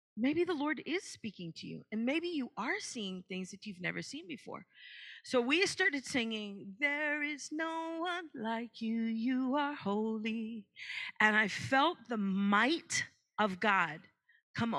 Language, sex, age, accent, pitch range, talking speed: English, female, 40-59, American, 210-295 Hz, 160 wpm